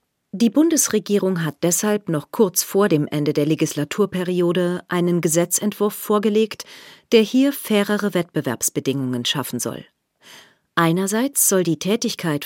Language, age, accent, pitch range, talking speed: German, 40-59, German, 155-205 Hz, 115 wpm